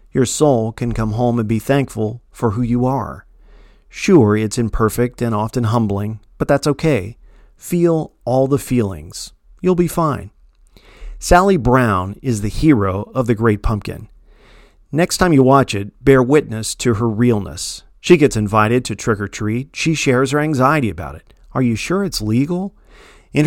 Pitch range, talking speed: 110-140 Hz, 170 wpm